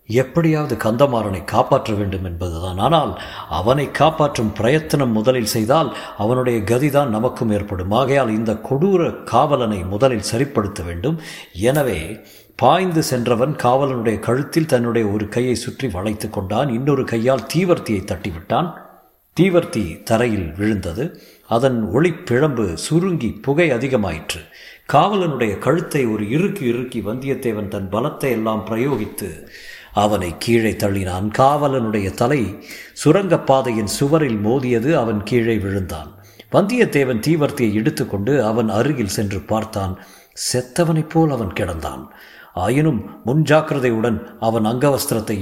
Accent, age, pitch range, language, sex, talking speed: native, 50-69, 105-140 Hz, Tamil, male, 105 wpm